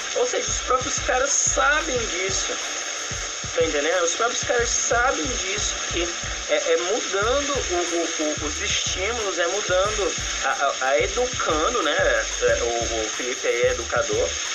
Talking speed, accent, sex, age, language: 155 wpm, Brazilian, male, 20-39, Portuguese